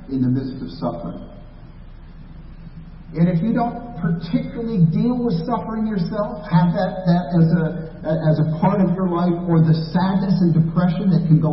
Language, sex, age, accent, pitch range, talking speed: English, male, 50-69, American, 150-185 Hz, 165 wpm